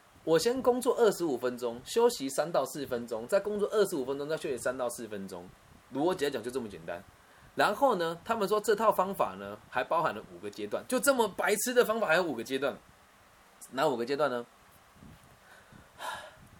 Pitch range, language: 130-210 Hz, Chinese